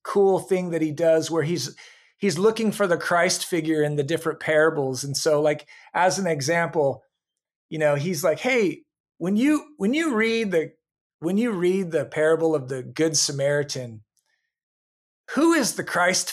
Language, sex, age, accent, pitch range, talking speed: English, male, 40-59, American, 150-215 Hz, 175 wpm